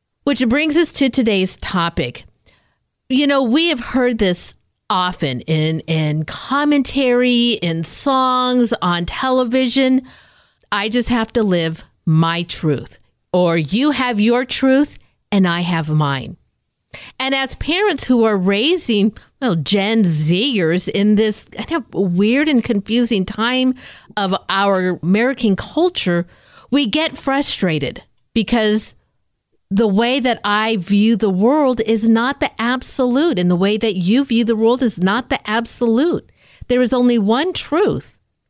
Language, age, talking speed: English, 50-69, 140 wpm